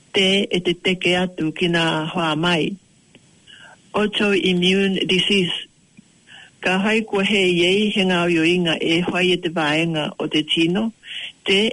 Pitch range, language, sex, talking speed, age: 160-190 Hz, English, male, 125 wpm, 60-79